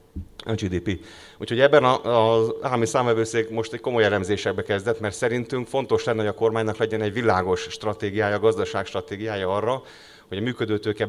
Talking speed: 155 wpm